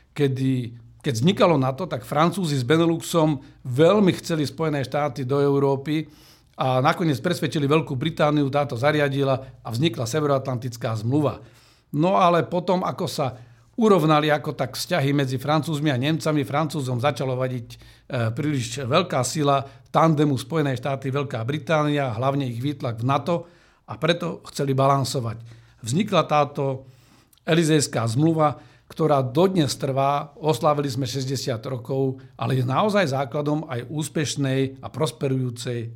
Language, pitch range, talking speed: Slovak, 130-155 Hz, 130 wpm